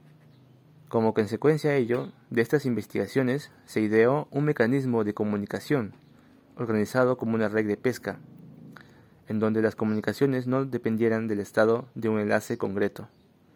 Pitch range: 110-135 Hz